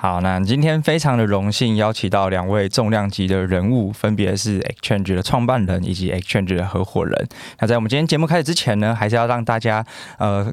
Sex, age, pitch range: male, 20-39, 100-125 Hz